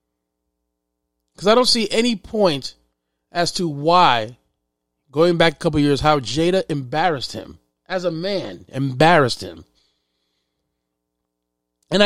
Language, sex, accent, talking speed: English, male, American, 120 wpm